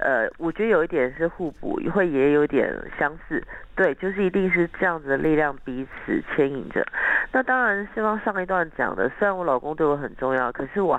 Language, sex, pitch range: Chinese, female, 135-190 Hz